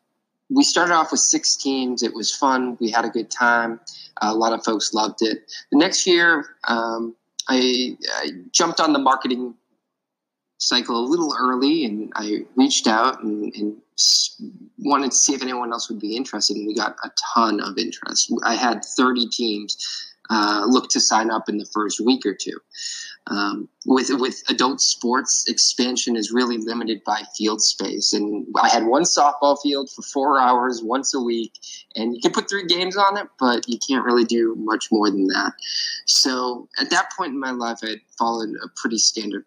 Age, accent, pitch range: 20-39, American, 110-135 Hz